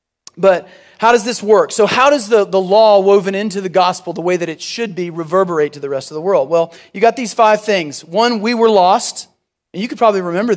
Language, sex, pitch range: English, male, 185-225 Hz